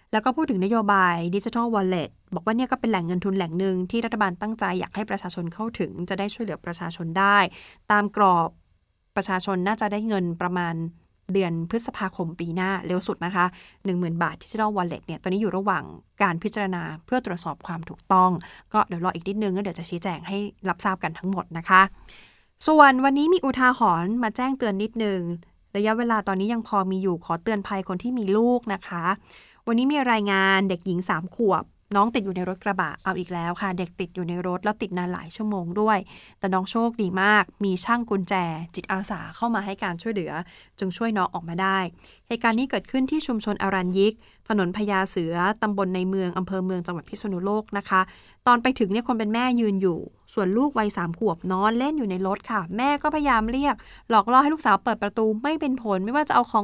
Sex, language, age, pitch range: female, Thai, 20-39, 185-225 Hz